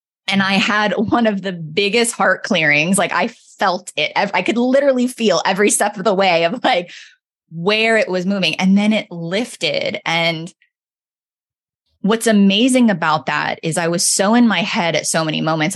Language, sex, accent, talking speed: English, female, American, 185 wpm